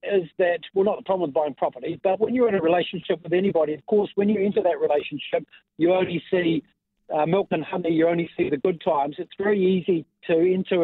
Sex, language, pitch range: male, English, 150-180 Hz